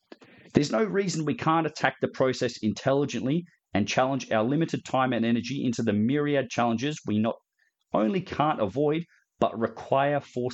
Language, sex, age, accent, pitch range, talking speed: English, male, 30-49, Australian, 110-145 Hz, 160 wpm